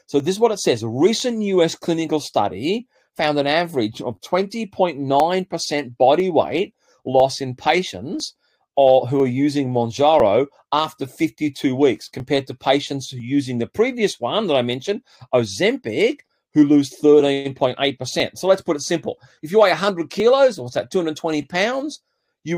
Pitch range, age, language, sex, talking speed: 130-180 Hz, 40-59, English, male, 150 wpm